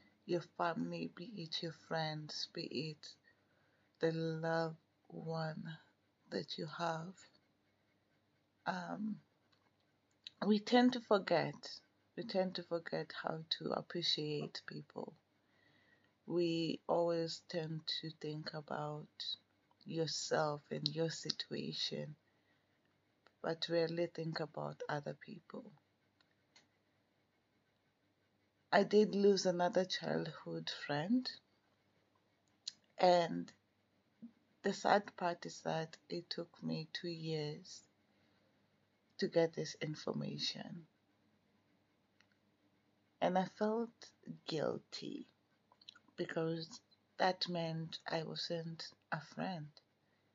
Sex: female